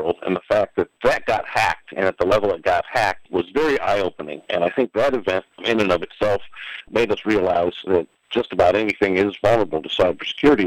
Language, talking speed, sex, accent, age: English, 210 wpm, male, American, 50-69